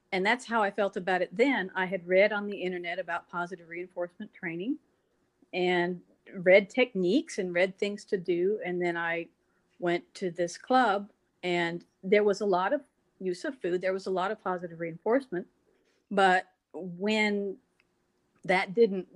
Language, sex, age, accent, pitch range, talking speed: English, female, 50-69, American, 170-200 Hz, 165 wpm